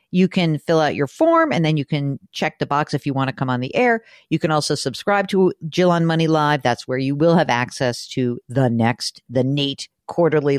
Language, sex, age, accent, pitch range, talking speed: English, female, 50-69, American, 125-170 Hz, 240 wpm